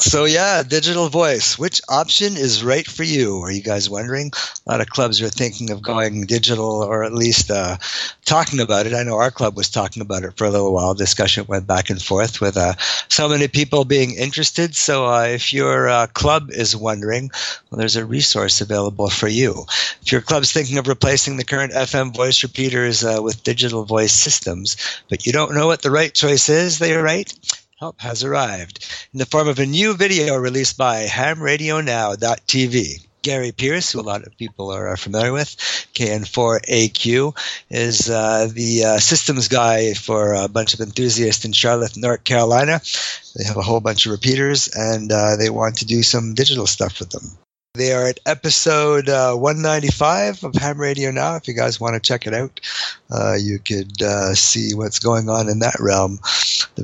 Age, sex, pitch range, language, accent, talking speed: 50-69, male, 110-140 Hz, English, American, 195 wpm